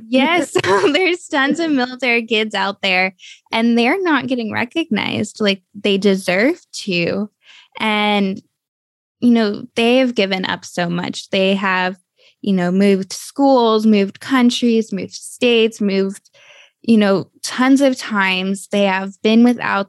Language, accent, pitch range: English, American, 180-220 Hz